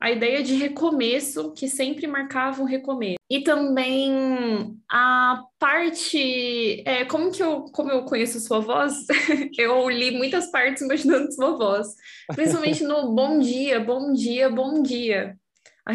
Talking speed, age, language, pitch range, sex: 145 wpm, 10-29, Portuguese, 225-275 Hz, female